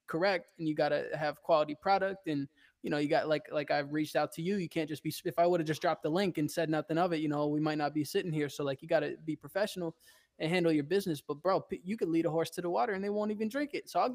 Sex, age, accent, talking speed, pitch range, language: male, 20-39, American, 315 wpm, 155-205 Hz, English